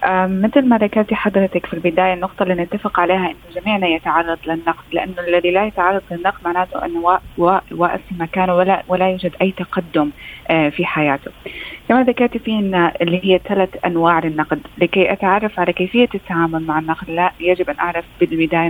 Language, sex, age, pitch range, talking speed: Arabic, female, 20-39, 170-195 Hz, 165 wpm